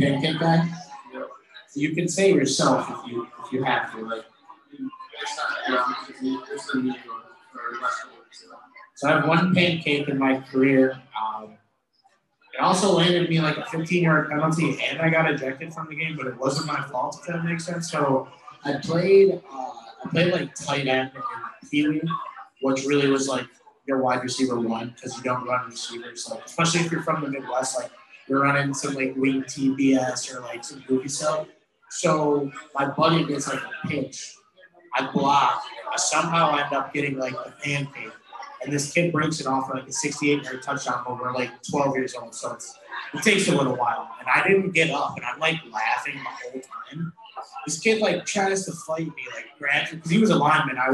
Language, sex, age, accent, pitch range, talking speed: English, male, 20-39, American, 130-165 Hz, 185 wpm